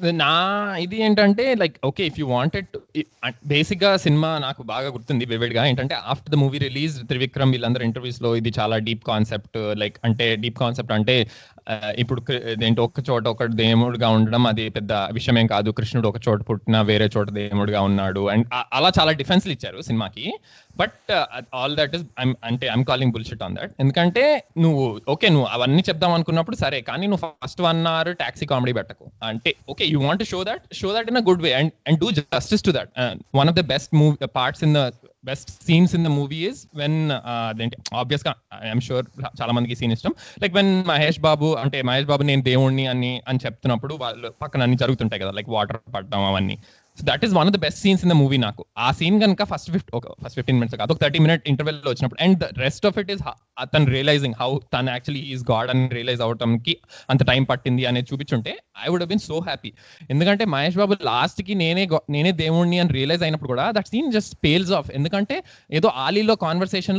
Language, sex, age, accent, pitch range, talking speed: Telugu, male, 20-39, native, 120-170 Hz, 200 wpm